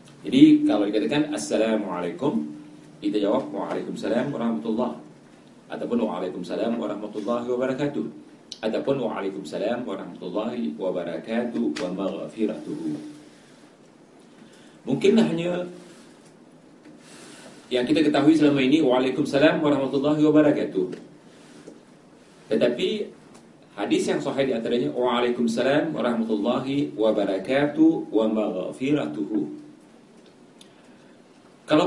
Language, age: Malay, 40-59